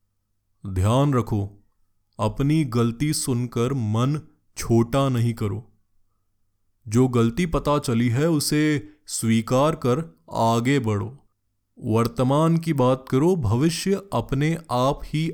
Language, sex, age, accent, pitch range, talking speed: Hindi, male, 20-39, native, 110-150 Hz, 105 wpm